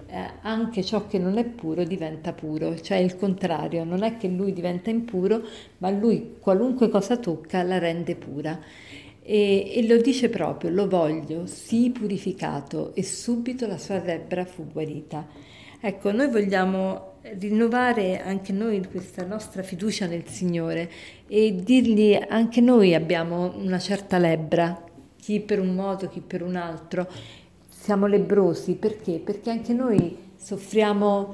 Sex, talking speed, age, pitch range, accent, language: female, 145 wpm, 50-69, 180-210 Hz, native, Italian